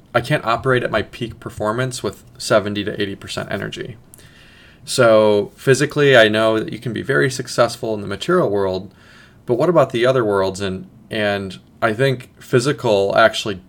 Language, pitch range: English, 100-125 Hz